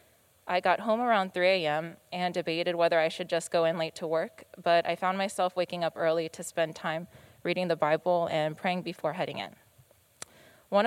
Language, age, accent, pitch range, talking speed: English, 20-39, American, 165-185 Hz, 195 wpm